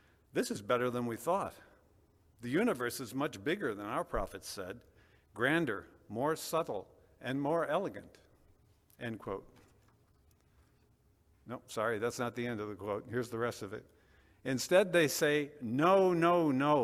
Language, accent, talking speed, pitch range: English, American, 145 wpm, 105-140 Hz